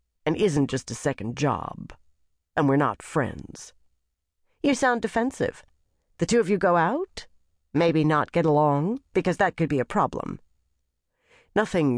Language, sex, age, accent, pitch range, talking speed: English, female, 40-59, American, 110-175 Hz, 150 wpm